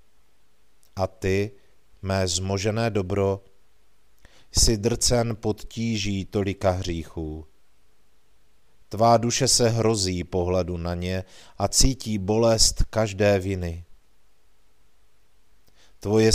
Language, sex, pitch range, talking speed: Czech, male, 95-110 Hz, 85 wpm